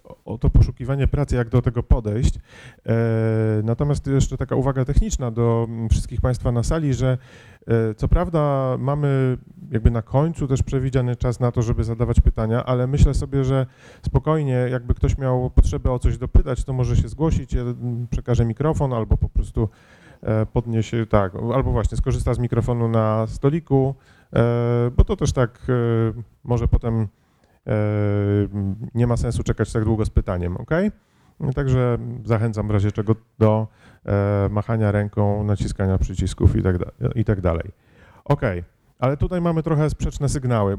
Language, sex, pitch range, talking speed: Polish, male, 110-130 Hz, 150 wpm